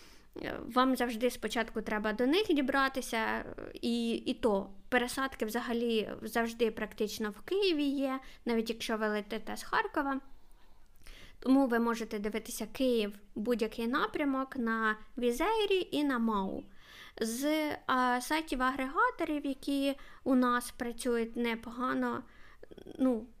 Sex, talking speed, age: female, 115 wpm, 20-39